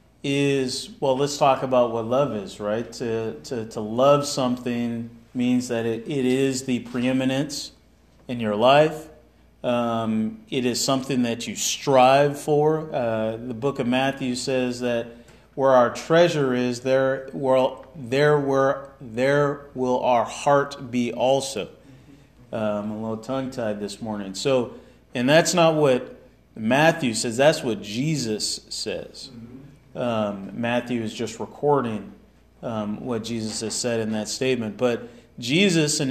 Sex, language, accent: male, English, American